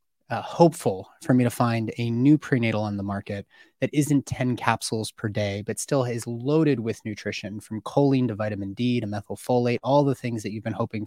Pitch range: 110-135 Hz